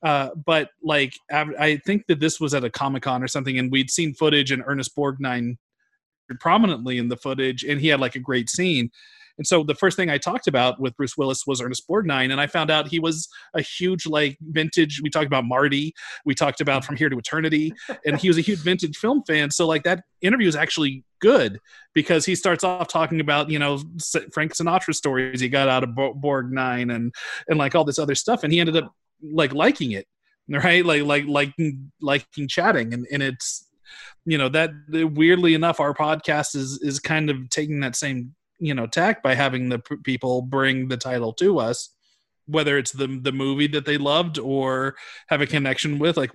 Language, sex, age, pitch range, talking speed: English, male, 30-49, 135-160 Hz, 210 wpm